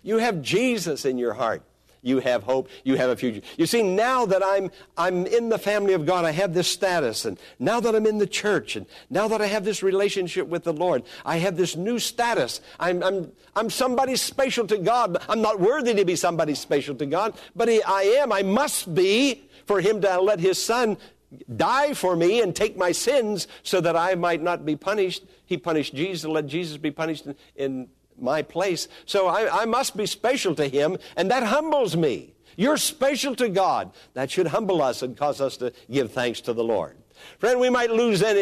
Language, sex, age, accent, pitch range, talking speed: English, male, 60-79, American, 155-210 Hz, 215 wpm